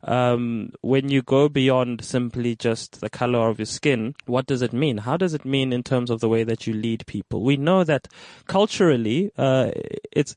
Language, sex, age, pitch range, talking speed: English, male, 20-39, 120-150 Hz, 205 wpm